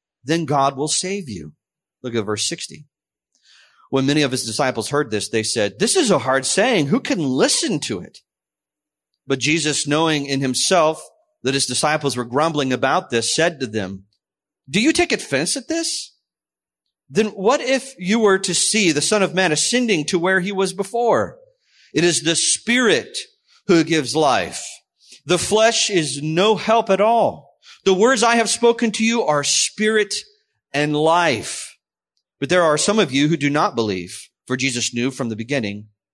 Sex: male